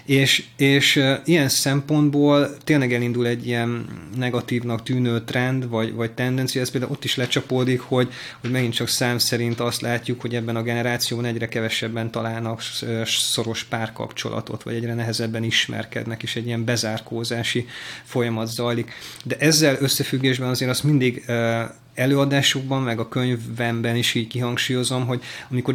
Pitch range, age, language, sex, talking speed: 115-130 Hz, 30-49, Hungarian, male, 140 wpm